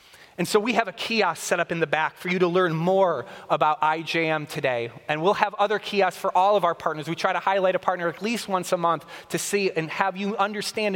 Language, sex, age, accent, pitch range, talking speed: English, male, 30-49, American, 170-215 Hz, 250 wpm